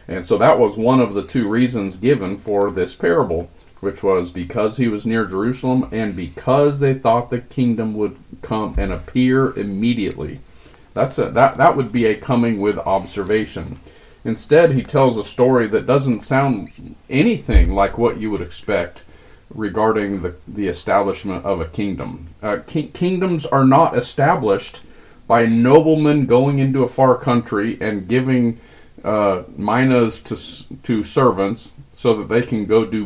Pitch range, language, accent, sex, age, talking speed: 100-130 Hz, English, American, male, 40-59, 155 wpm